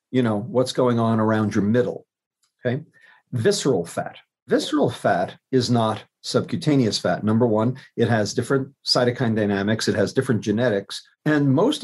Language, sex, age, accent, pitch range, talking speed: English, male, 50-69, American, 105-135 Hz, 150 wpm